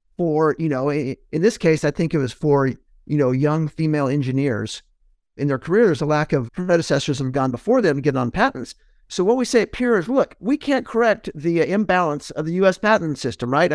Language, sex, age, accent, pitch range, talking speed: English, male, 50-69, American, 150-205 Hz, 215 wpm